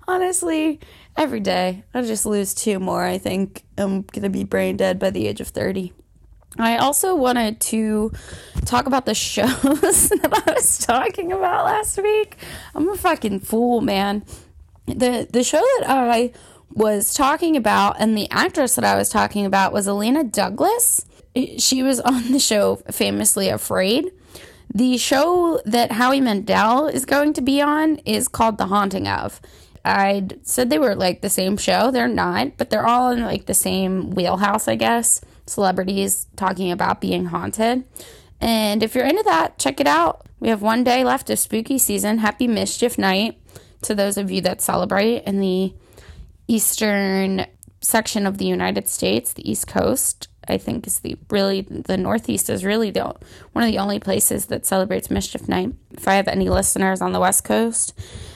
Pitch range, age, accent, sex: 190-260 Hz, 20-39, American, female